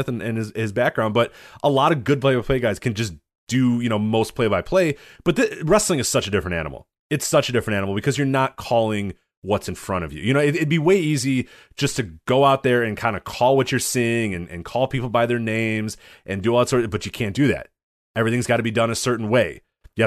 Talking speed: 245 wpm